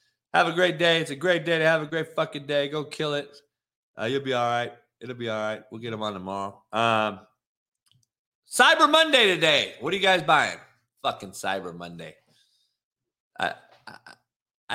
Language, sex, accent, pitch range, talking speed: English, male, American, 110-180 Hz, 180 wpm